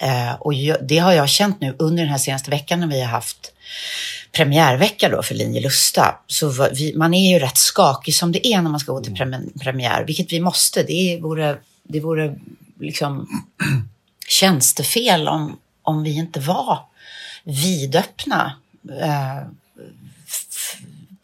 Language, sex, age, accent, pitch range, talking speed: English, female, 30-49, Swedish, 130-165 Hz, 155 wpm